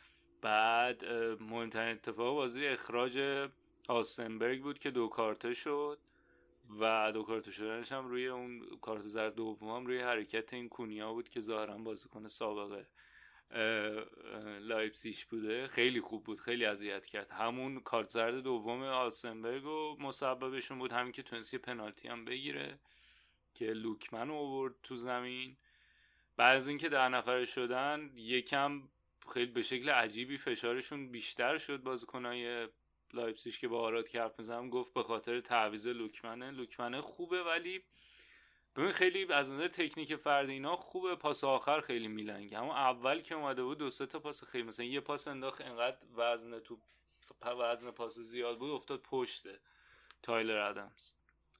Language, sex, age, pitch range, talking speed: Persian, male, 30-49, 115-135 Hz, 145 wpm